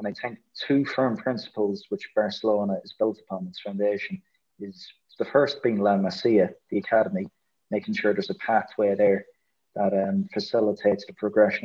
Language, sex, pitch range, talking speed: English, male, 105-125 Hz, 165 wpm